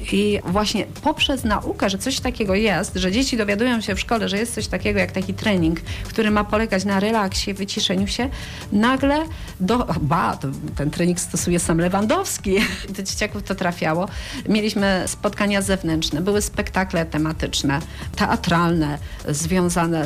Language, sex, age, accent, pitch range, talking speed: Polish, female, 40-59, native, 160-215 Hz, 145 wpm